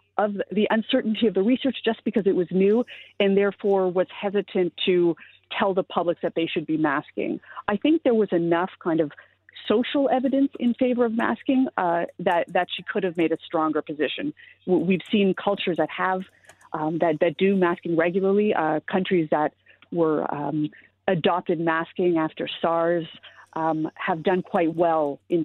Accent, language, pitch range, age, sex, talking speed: American, English, 165-205 Hz, 40-59, female, 170 wpm